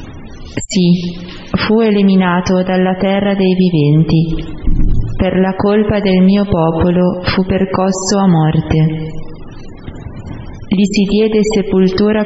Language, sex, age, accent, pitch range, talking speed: Italian, female, 20-39, native, 165-195 Hz, 105 wpm